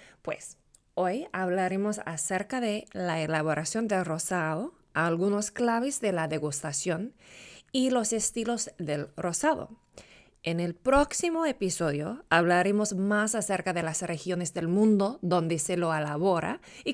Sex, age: female, 20-39